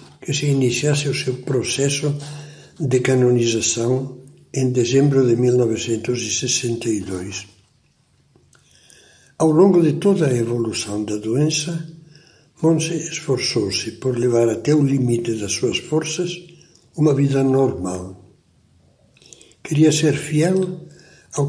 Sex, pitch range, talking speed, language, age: male, 120-155 Hz, 105 wpm, Portuguese, 60-79